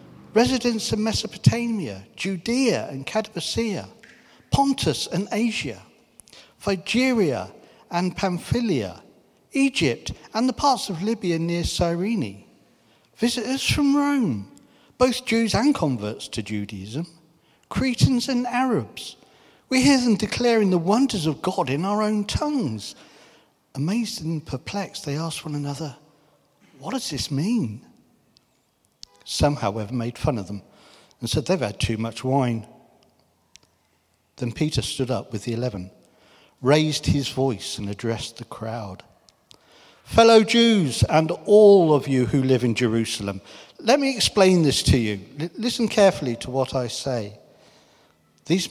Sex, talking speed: male, 130 wpm